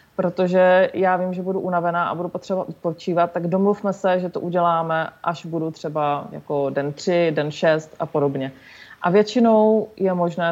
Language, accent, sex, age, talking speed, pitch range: Czech, native, female, 30-49, 170 wpm, 165-195 Hz